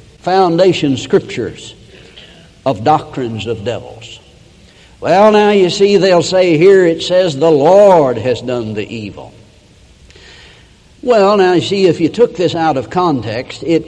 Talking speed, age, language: 145 wpm, 60-79, English